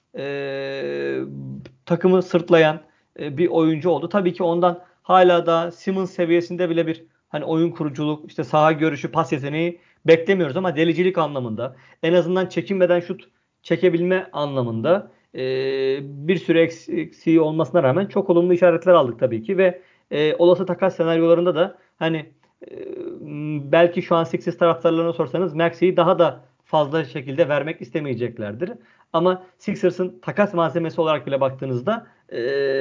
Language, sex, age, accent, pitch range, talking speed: Turkish, male, 50-69, native, 155-180 Hz, 140 wpm